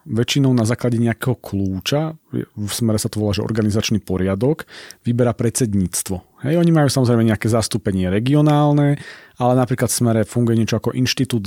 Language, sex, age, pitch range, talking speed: Slovak, male, 40-59, 110-135 Hz, 155 wpm